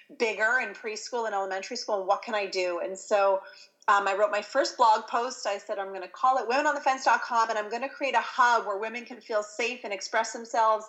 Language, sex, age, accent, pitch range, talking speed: English, female, 30-49, American, 195-245 Hz, 230 wpm